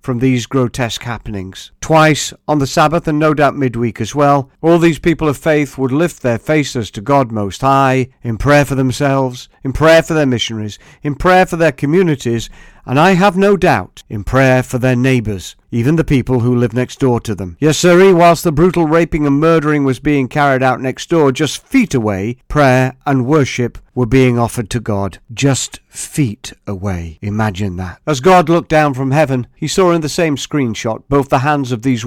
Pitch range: 115-145 Hz